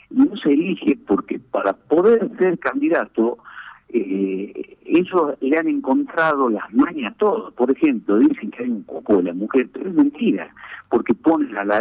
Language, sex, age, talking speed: Spanish, male, 50-69, 175 wpm